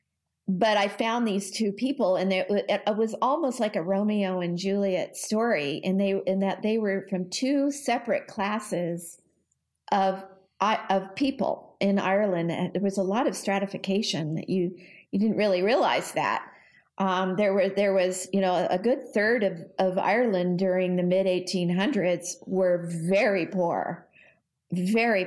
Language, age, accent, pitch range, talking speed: English, 50-69, American, 180-200 Hz, 150 wpm